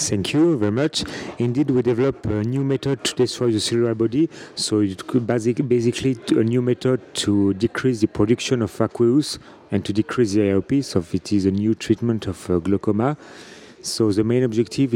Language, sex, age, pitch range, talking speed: English, male, 40-59, 100-115 Hz, 185 wpm